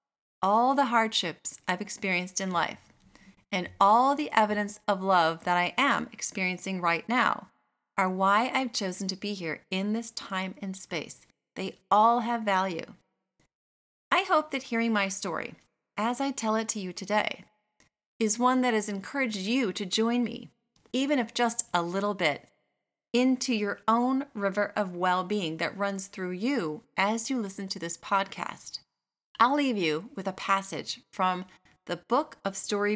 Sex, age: female, 30-49